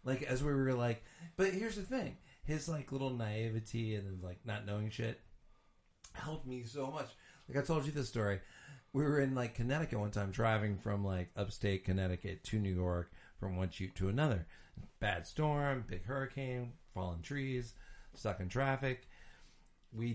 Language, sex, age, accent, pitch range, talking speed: English, male, 40-59, American, 90-125 Hz, 175 wpm